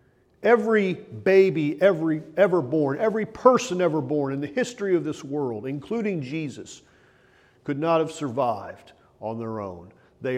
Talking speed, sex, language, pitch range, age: 145 wpm, male, English, 130-175 Hz, 40-59